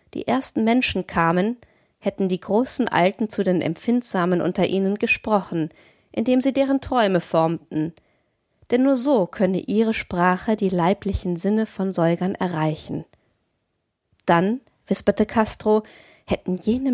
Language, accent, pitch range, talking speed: German, German, 180-225 Hz, 130 wpm